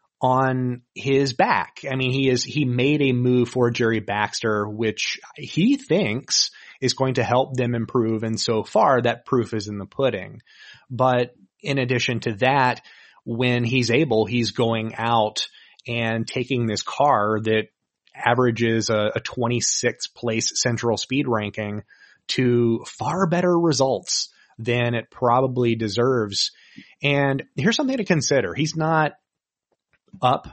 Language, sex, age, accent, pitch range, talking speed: English, male, 30-49, American, 110-135 Hz, 140 wpm